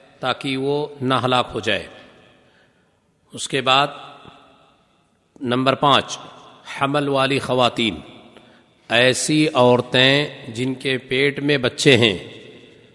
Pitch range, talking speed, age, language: 130-150 Hz, 100 wpm, 50-69, Urdu